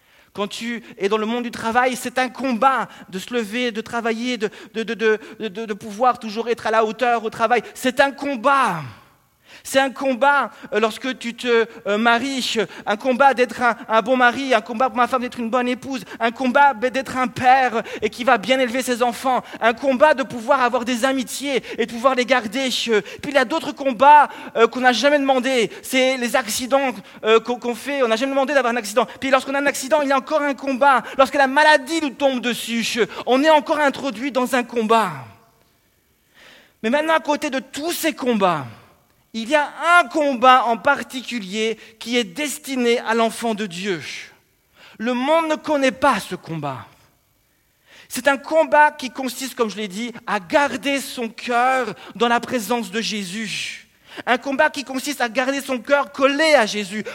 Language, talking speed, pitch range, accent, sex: French, 190 wpm, 225-275 Hz, French, male